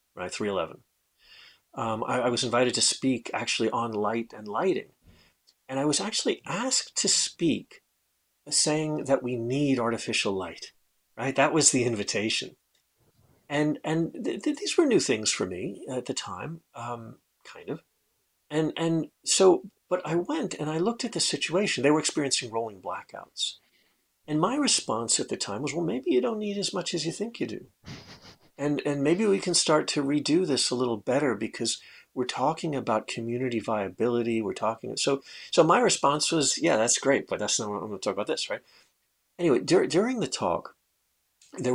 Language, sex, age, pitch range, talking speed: English, male, 40-59, 115-165 Hz, 185 wpm